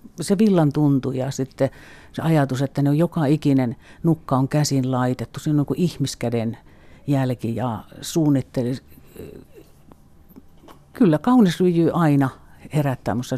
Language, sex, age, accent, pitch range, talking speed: Finnish, female, 50-69, native, 115-150 Hz, 120 wpm